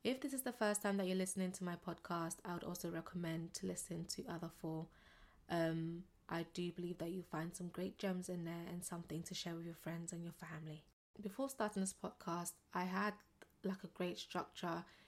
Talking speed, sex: 210 wpm, female